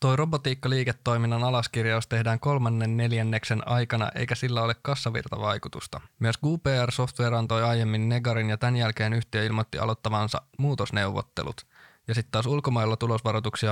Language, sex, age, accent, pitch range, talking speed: Finnish, male, 20-39, native, 110-120 Hz, 125 wpm